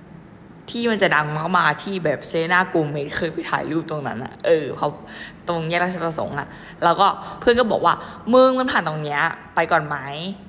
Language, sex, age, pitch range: Thai, female, 20-39, 155-195 Hz